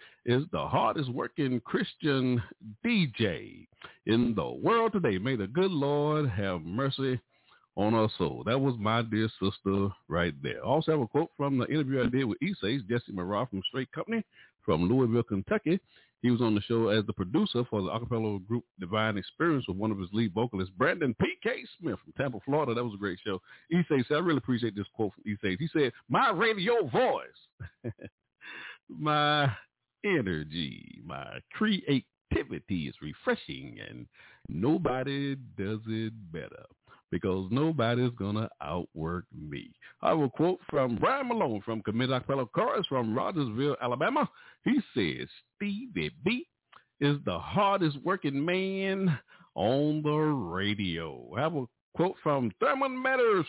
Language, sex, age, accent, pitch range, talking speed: English, male, 50-69, American, 110-160 Hz, 155 wpm